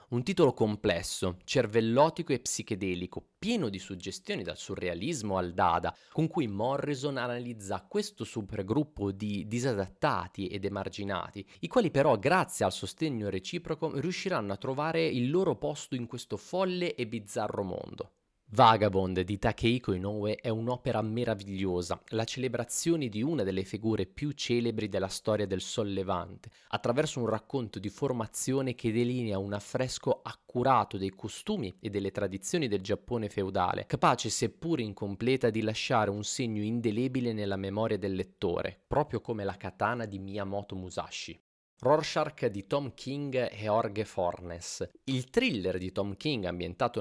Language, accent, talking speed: Italian, native, 145 wpm